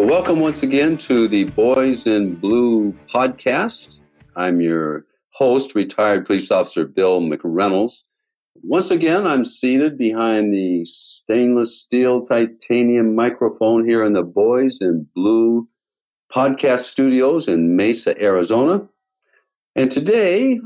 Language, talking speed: English, 115 wpm